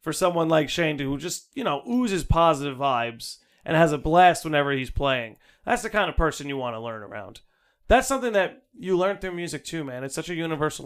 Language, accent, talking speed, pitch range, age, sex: English, American, 225 wpm, 140-185 Hz, 30-49, male